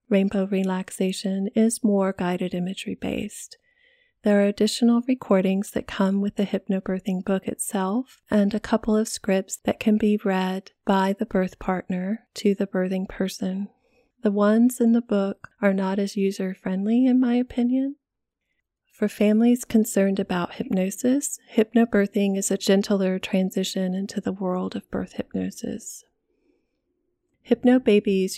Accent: American